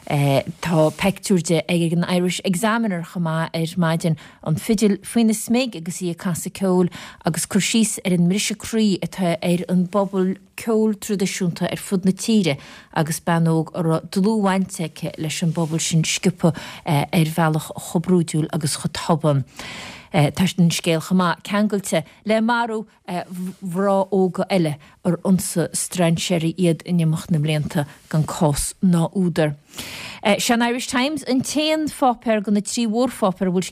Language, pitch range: English, 170-200 Hz